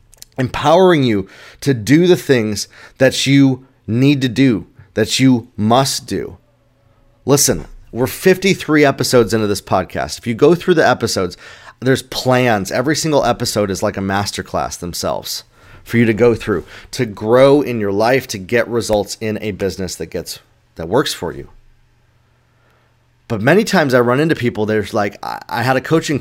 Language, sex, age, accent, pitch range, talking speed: English, male, 30-49, American, 105-135 Hz, 165 wpm